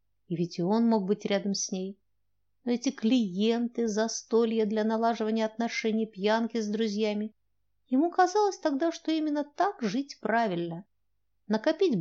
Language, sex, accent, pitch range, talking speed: Russian, female, native, 170-255 Hz, 140 wpm